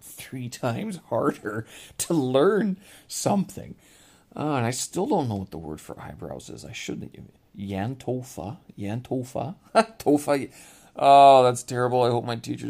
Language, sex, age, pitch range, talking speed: English, male, 30-49, 95-140 Hz, 150 wpm